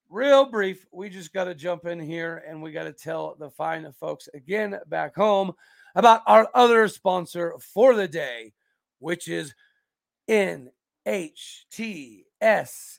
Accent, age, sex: American, 40-59, male